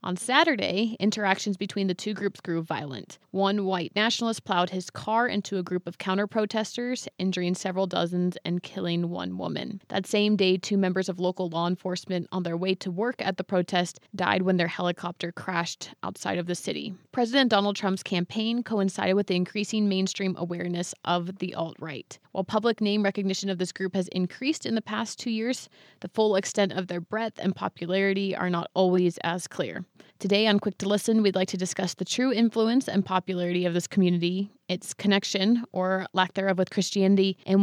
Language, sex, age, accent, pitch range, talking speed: English, female, 20-39, American, 185-205 Hz, 190 wpm